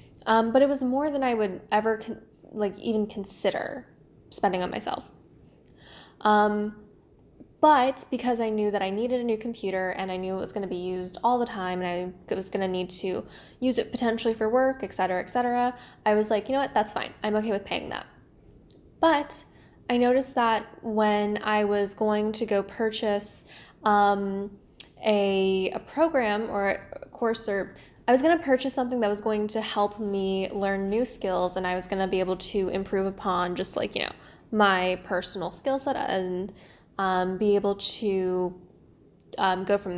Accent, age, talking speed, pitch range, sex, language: American, 10-29, 190 wpm, 190-230 Hz, female, English